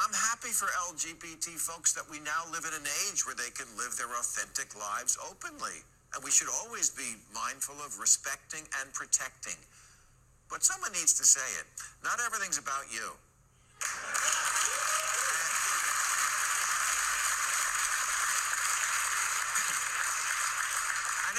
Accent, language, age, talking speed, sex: American, English, 50-69, 115 wpm, male